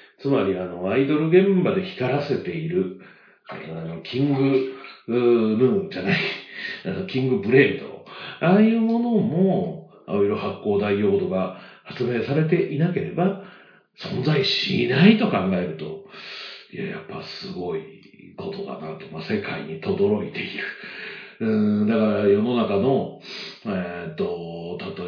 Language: Japanese